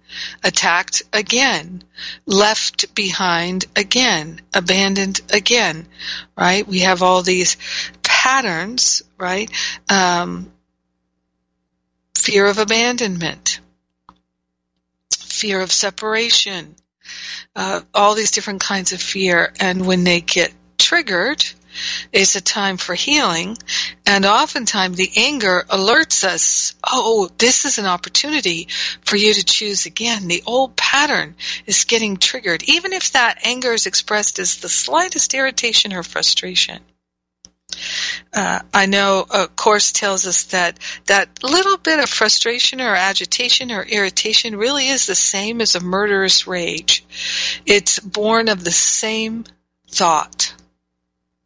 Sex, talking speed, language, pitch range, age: female, 120 wpm, English, 175-225 Hz, 60-79